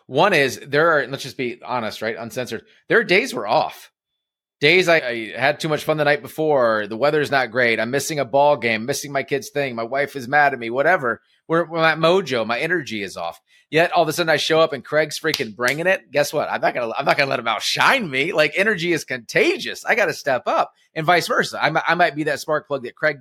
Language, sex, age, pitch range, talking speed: English, male, 30-49, 120-155 Hz, 250 wpm